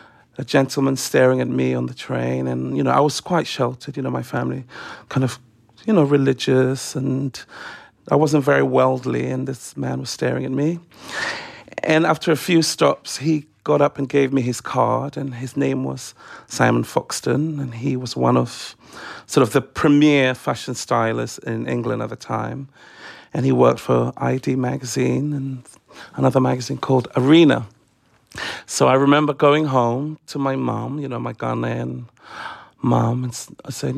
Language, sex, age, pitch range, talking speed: English, male, 40-59, 115-145 Hz, 175 wpm